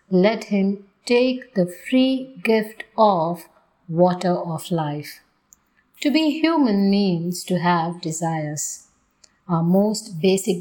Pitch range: 170-225 Hz